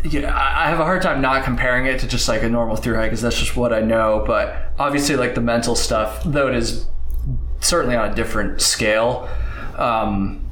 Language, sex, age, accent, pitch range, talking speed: English, male, 20-39, American, 110-135 Hz, 210 wpm